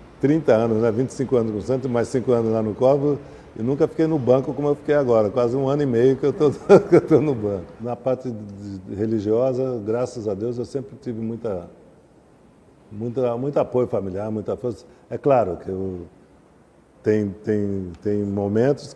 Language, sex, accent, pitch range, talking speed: Portuguese, male, Brazilian, 105-135 Hz, 185 wpm